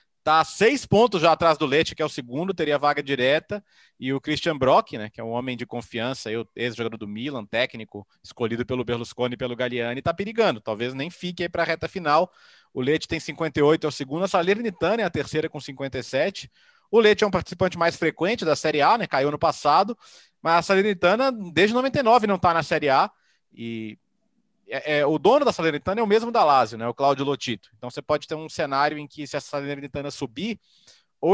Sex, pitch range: male, 125-165 Hz